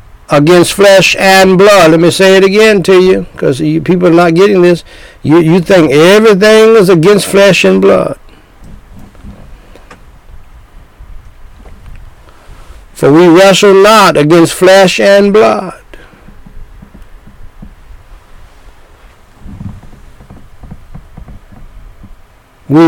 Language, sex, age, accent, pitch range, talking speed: English, male, 60-79, American, 145-215 Hz, 95 wpm